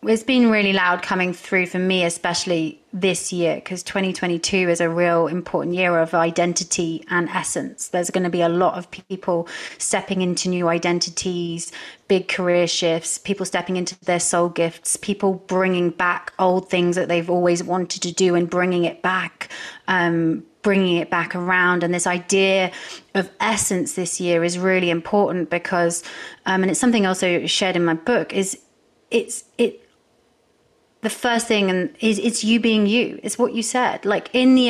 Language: English